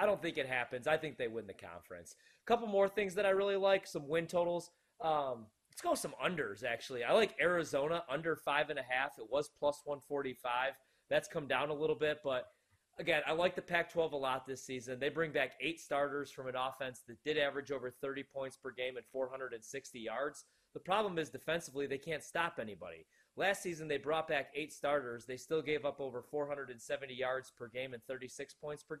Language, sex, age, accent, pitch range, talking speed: English, male, 30-49, American, 130-160 Hz, 215 wpm